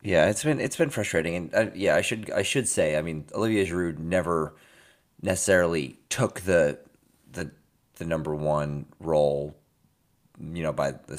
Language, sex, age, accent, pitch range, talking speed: English, male, 30-49, American, 75-90 Hz, 165 wpm